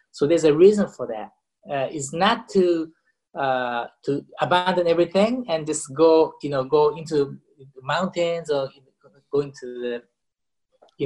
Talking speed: 150 wpm